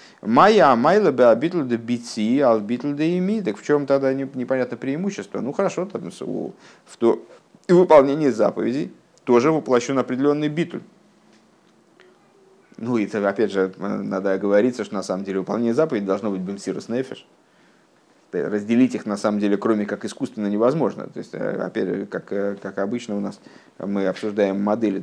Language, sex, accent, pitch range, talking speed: Russian, male, native, 100-140 Hz, 145 wpm